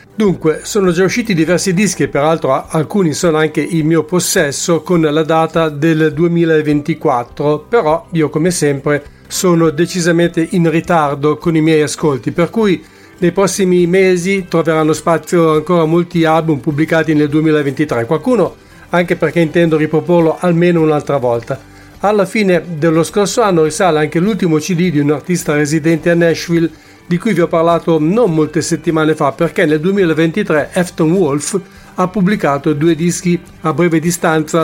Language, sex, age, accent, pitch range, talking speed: English, male, 50-69, Italian, 155-180 Hz, 150 wpm